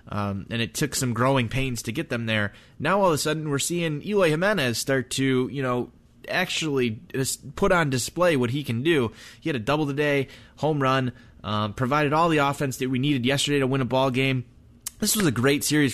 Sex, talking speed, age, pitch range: male, 220 wpm, 20-39, 115-145 Hz